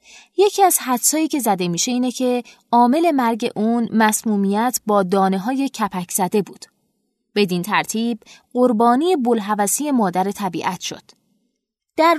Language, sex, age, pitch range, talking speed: Persian, female, 20-39, 190-245 Hz, 130 wpm